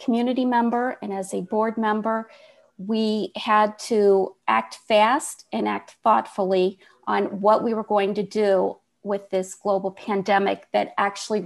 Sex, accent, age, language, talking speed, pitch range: female, American, 40-59, English, 145 wpm, 205-240 Hz